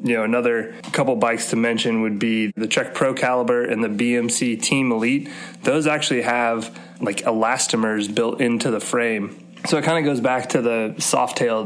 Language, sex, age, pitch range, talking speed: English, male, 20-39, 110-125 Hz, 190 wpm